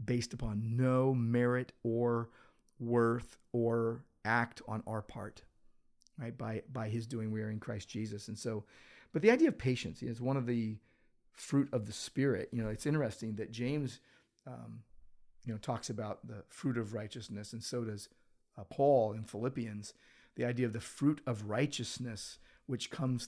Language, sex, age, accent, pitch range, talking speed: English, male, 40-59, American, 110-125 Hz, 175 wpm